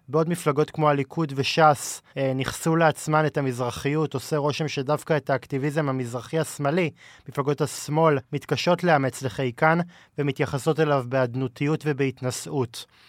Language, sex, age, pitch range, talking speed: Hebrew, male, 20-39, 135-160 Hz, 115 wpm